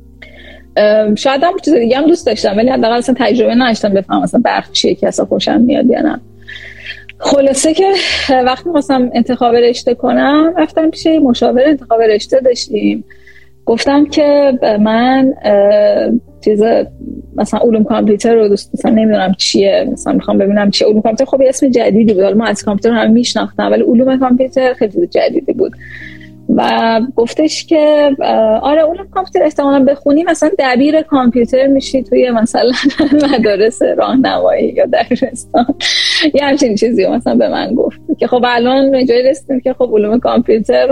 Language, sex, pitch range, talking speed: Persian, female, 220-285 Hz, 150 wpm